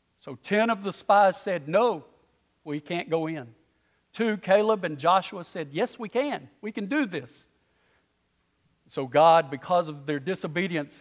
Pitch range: 130-185 Hz